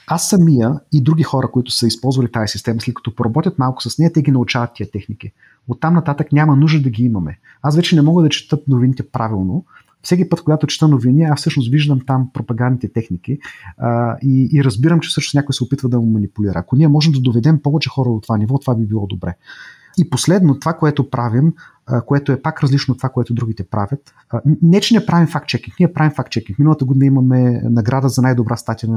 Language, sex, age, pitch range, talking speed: Bulgarian, male, 30-49, 120-150 Hz, 215 wpm